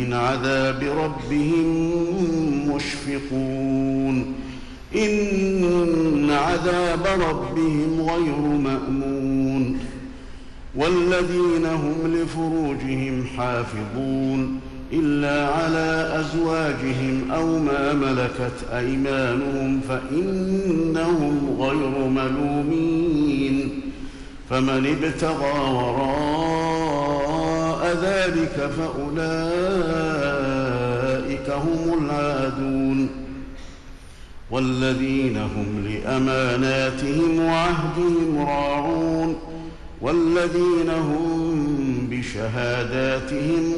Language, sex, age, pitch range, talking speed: Arabic, male, 50-69, 130-160 Hz, 50 wpm